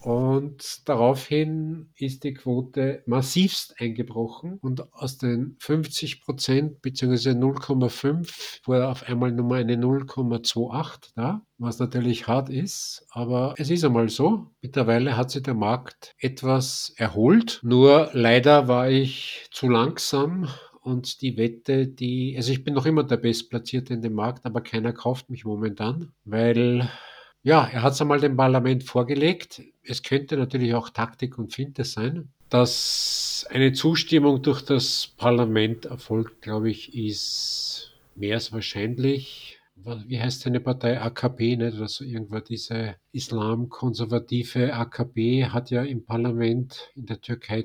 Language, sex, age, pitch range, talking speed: English, male, 50-69, 115-135 Hz, 140 wpm